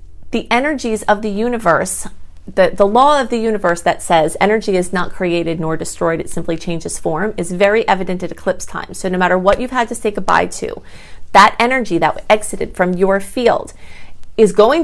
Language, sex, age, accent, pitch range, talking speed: English, female, 30-49, American, 180-225 Hz, 195 wpm